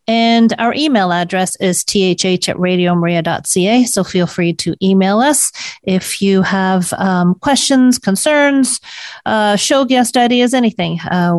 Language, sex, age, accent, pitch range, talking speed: English, female, 40-59, American, 180-230 Hz, 135 wpm